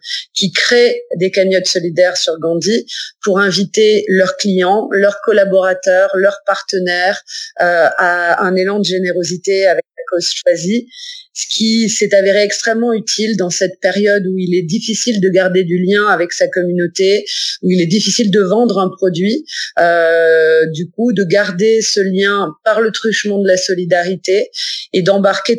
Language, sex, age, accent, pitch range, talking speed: French, female, 30-49, French, 180-205 Hz, 155 wpm